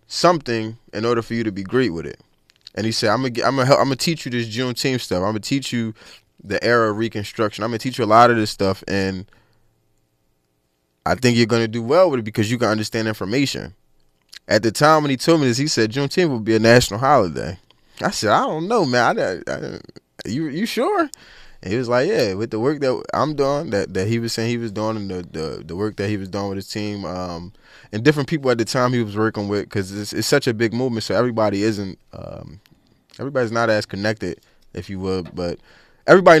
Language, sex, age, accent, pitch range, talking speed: English, male, 20-39, American, 95-120 Hz, 245 wpm